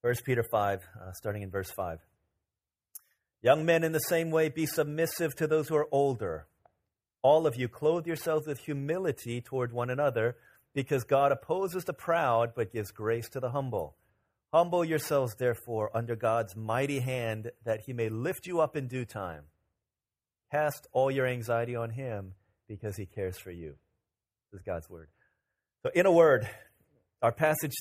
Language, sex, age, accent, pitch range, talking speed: English, male, 30-49, American, 115-155 Hz, 170 wpm